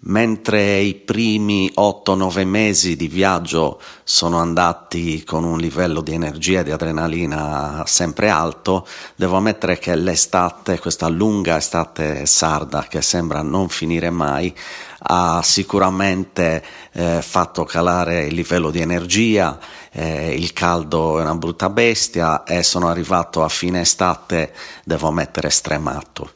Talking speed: 130 wpm